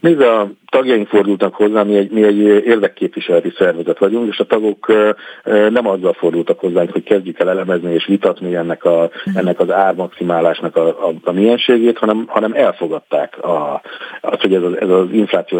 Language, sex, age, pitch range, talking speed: Hungarian, male, 50-69, 95-125 Hz, 165 wpm